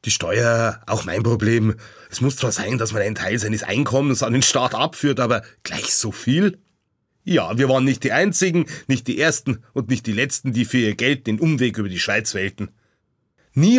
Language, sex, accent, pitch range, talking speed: German, male, German, 110-145 Hz, 205 wpm